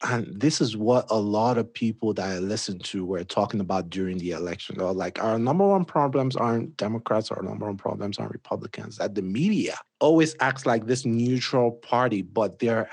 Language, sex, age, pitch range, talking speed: English, male, 30-49, 110-135 Hz, 210 wpm